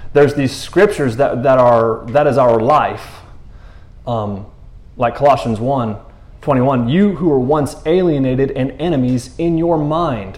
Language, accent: English, American